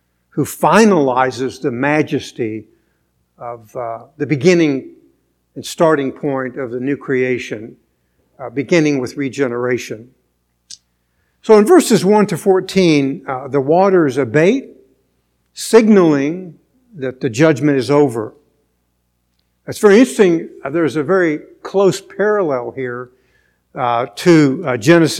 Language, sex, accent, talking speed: English, male, American, 115 wpm